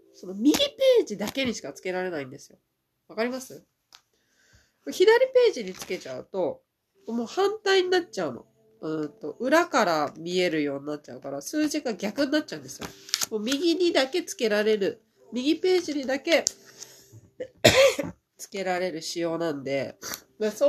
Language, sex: Japanese, female